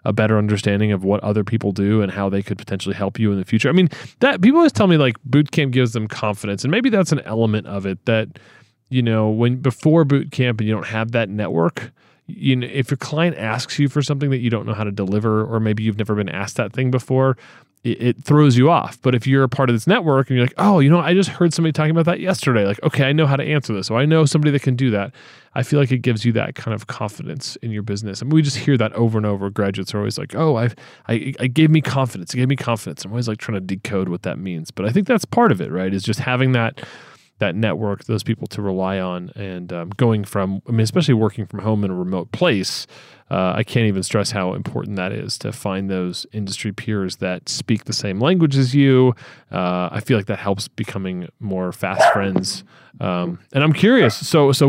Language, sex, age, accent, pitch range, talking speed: English, male, 30-49, American, 105-140 Hz, 255 wpm